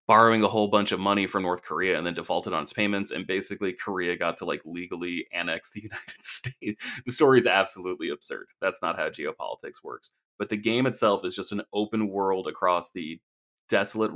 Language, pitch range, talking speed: English, 90-115 Hz, 205 wpm